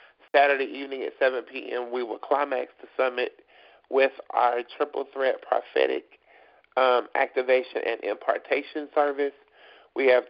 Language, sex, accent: English, male, American